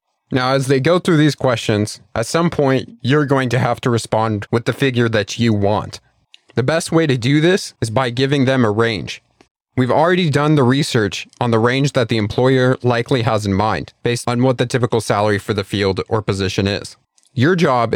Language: English